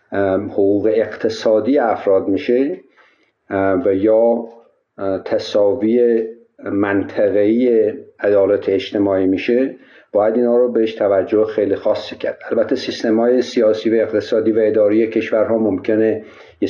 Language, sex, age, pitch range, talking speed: Persian, male, 50-69, 100-125 Hz, 110 wpm